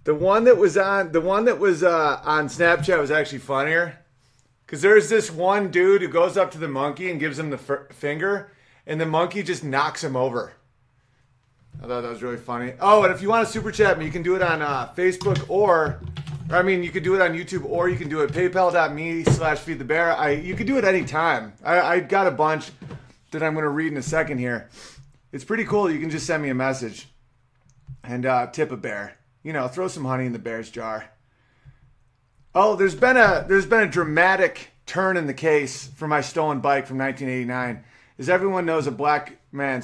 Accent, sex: American, male